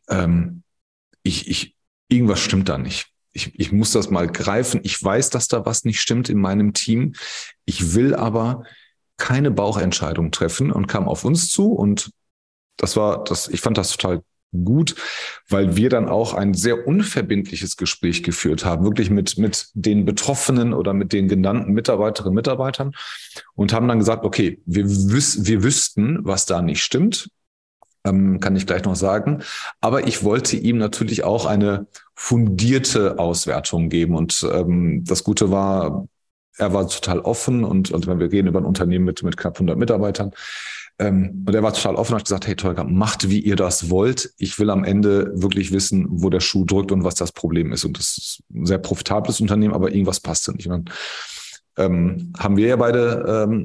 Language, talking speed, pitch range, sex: German, 185 wpm, 95-115 Hz, male